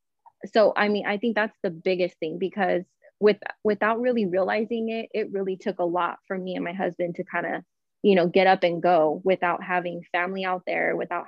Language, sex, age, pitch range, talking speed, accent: English, female, 20-39, 180-205 Hz, 215 wpm, American